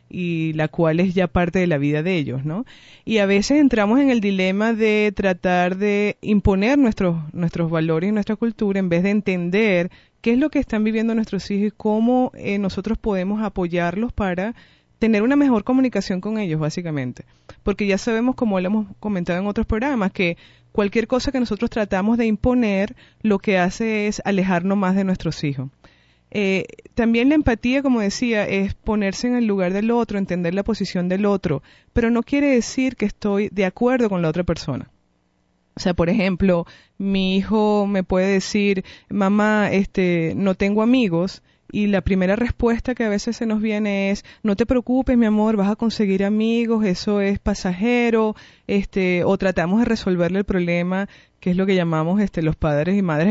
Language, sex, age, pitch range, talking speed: English, female, 20-39, 185-225 Hz, 185 wpm